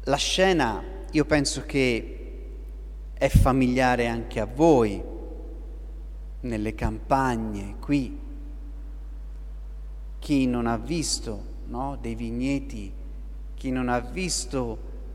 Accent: native